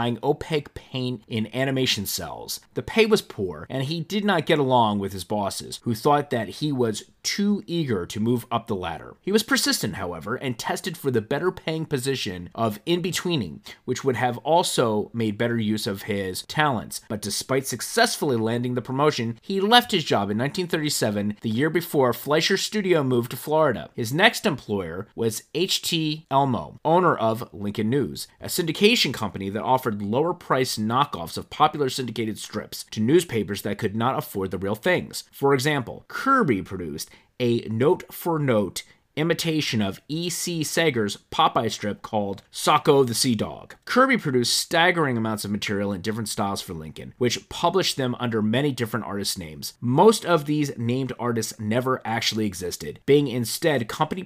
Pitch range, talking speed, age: 110-155 Hz, 165 wpm, 30-49